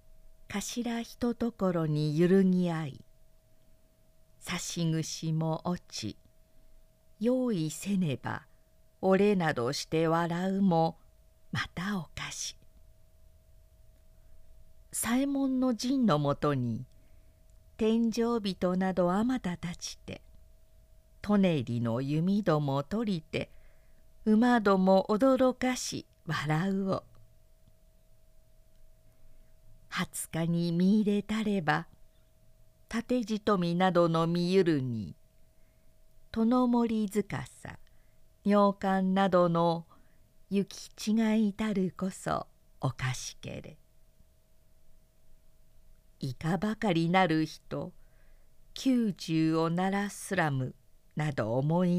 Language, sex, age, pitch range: Japanese, female, 50-69, 130-200 Hz